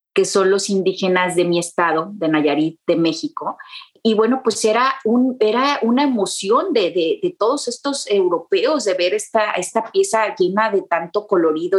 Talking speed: 175 wpm